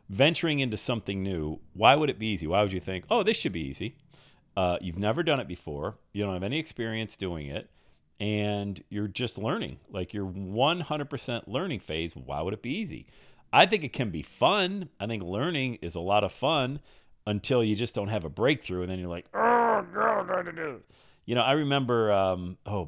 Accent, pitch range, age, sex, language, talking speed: American, 85-115 Hz, 40-59, male, English, 215 wpm